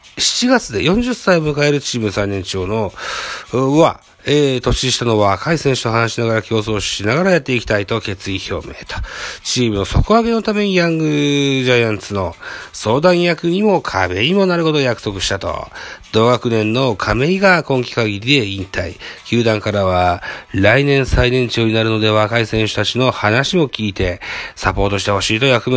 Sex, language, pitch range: male, Japanese, 100-140 Hz